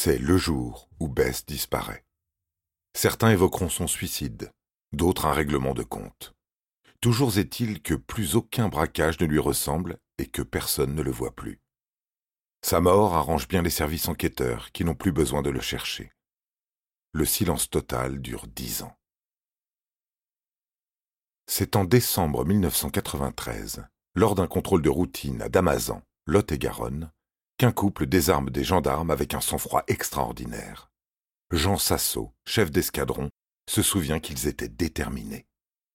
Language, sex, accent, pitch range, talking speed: French, male, French, 70-95 Hz, 135 wpm